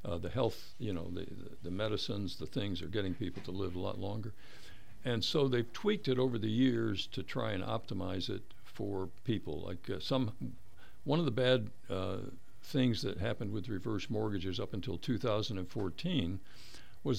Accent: American